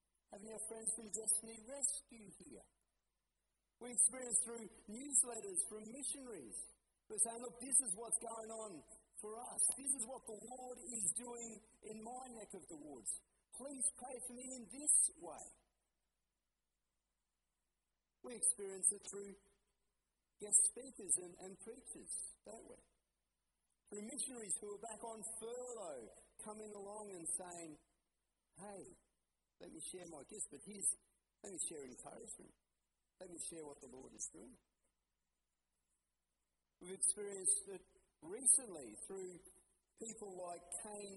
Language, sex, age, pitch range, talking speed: English, male, 50-69, 185-240 Hz, 135 wpm